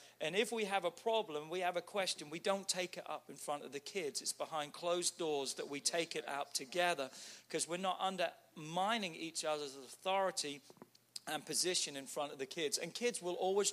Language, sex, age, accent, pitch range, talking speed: English, male, 40-59, British, 150-190 Hz, 210 wpm